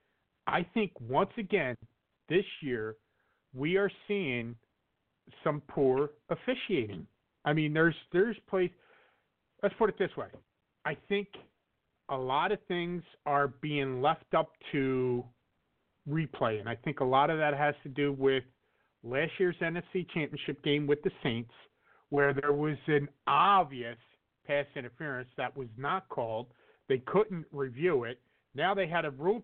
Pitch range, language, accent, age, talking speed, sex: 135-180 Hz, English, American, 50-69, 150 wpm, male